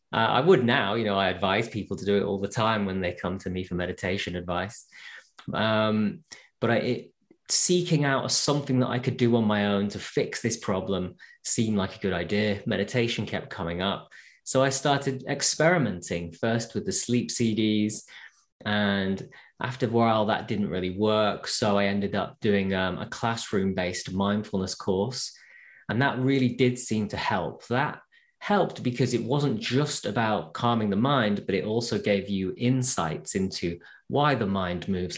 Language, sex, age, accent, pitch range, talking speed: English, male, 20-39, British, 100-125 Hz, 175 wpm